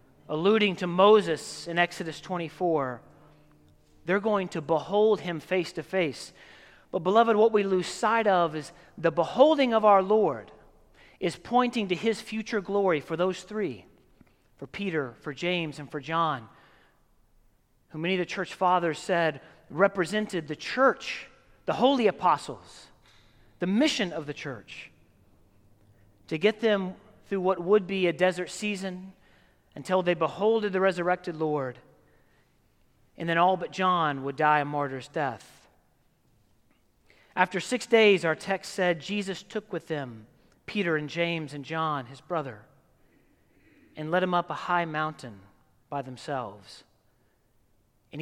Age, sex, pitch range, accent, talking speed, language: 40-59, male, 125-185 Hz, American, 140 wpm, English